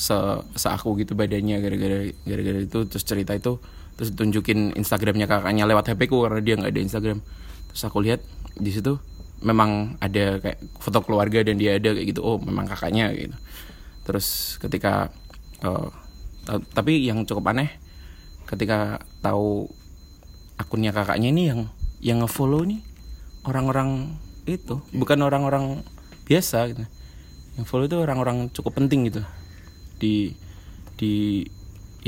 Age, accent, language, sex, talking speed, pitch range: 20-39, native, Indonesian, male, 130 wpm, 95-115 Hz